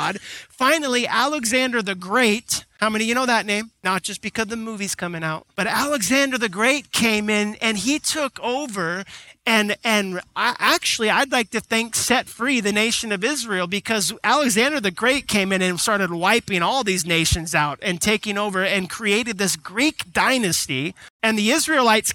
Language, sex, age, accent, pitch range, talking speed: English, male, 30-49, American, 195-245 Hz, 175 wpm